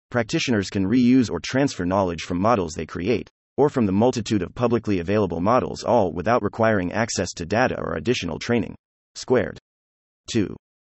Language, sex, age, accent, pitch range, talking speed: English, male, 30-49, American, 90-120 Hz, 160 wpm